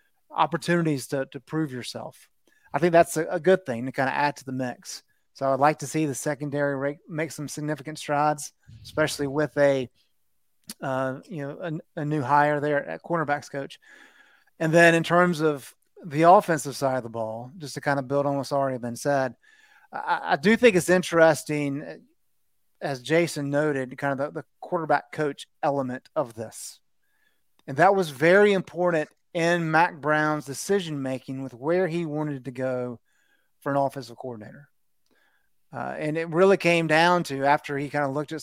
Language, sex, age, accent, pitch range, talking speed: English, male, 30-49, American, 135-160 Hz, 180 wpm